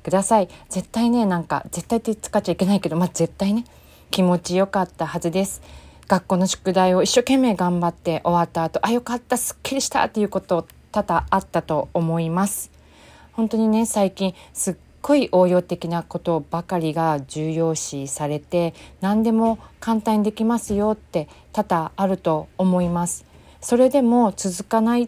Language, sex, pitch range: Japanese, female, 170-220 Hz